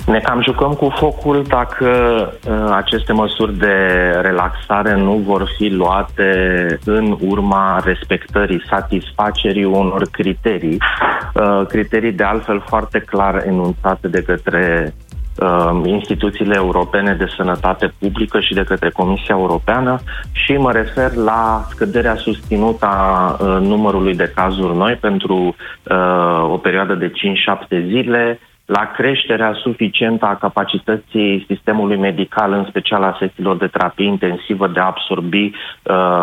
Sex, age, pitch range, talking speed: male, 30-49, 95-110 Hz, 120 wpm